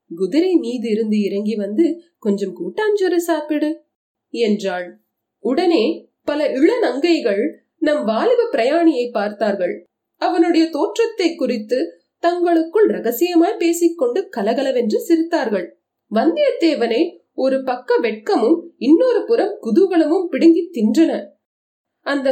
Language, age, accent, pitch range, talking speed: Tamil, 30-49, native, 235-340 Hz, 90 wpm